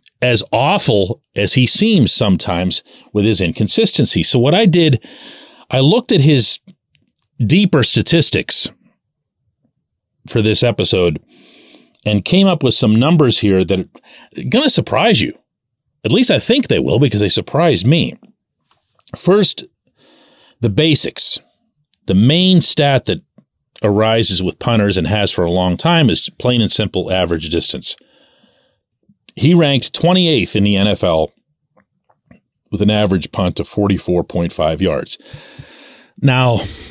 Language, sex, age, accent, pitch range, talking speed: English, male, 40-59, American, 105-150 Hz, 130 wpm